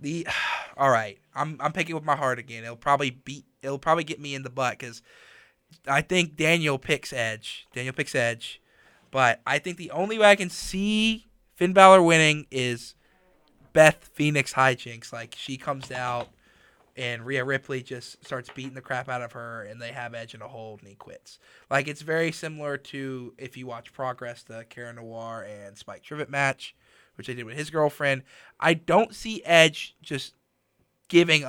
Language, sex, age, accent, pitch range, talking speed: English, male, 20-39, American, 125-160 Hz, 185 wpm